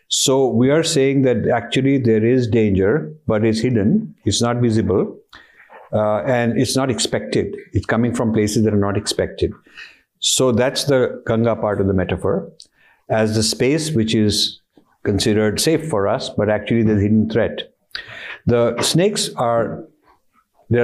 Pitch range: 110-135 Hz